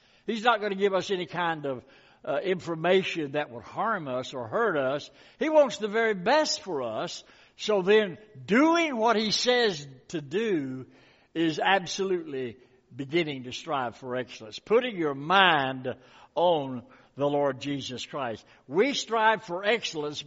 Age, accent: 60-79, American